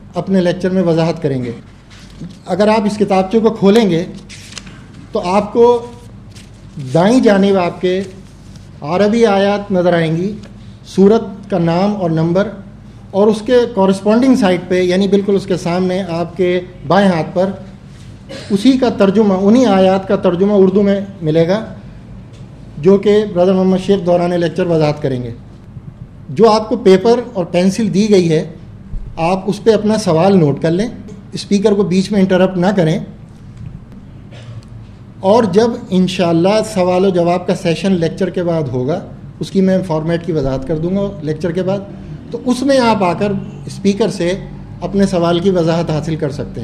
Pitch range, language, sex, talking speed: 160-200 Hz, English, male, 160 wpm